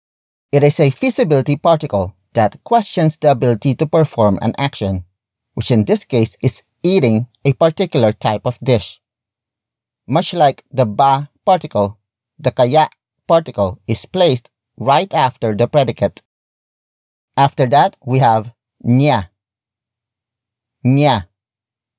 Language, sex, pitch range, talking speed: English, male, 110-140 Hz, 120 wpm